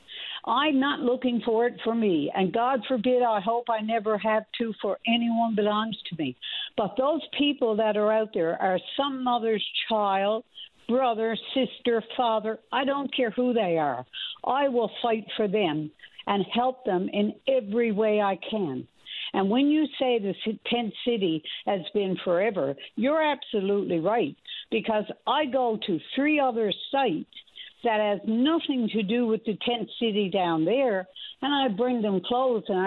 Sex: female